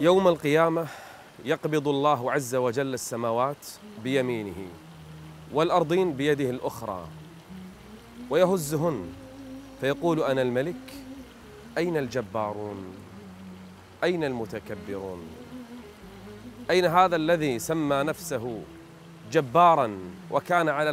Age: 30-49